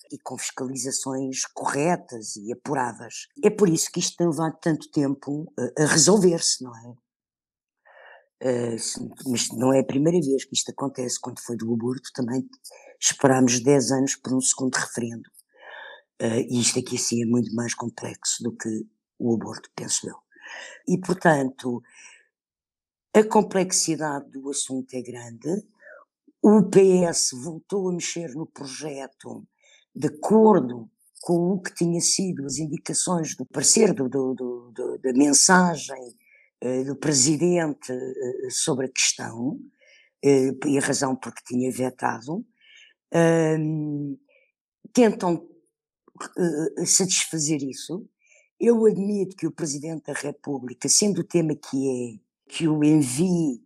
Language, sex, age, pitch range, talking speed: Portuguese, female, 50-69, 130-180 Hz, 135 wpm